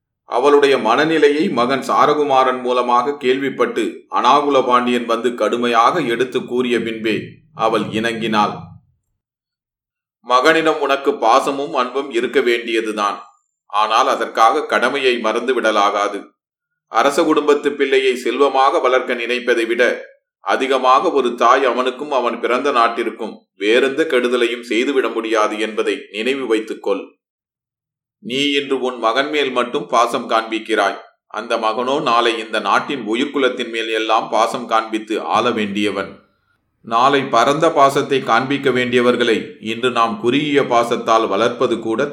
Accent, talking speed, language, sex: native, 115 wpm, Tamil, male